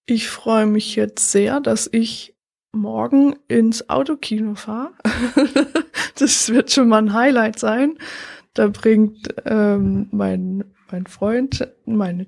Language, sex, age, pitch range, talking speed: German, female, 20-39, 200-235 Hz, 120 wpm